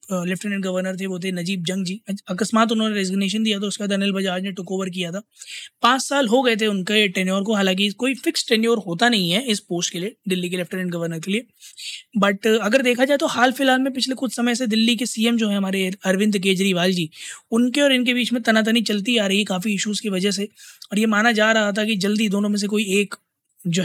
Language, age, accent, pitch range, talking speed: Hindi, 20-39, native, 195-240 Hz, 245 wpm